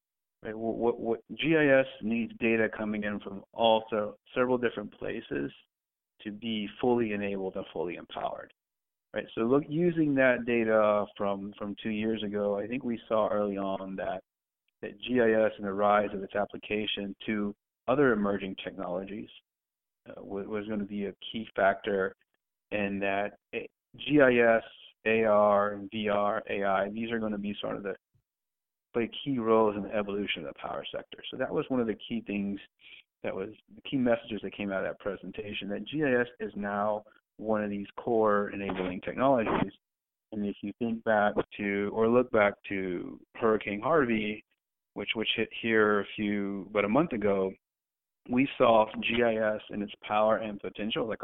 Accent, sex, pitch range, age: American, male, 100-115 Hz, 30-49